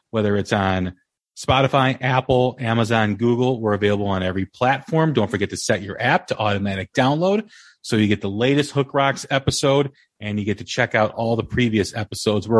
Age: 30-49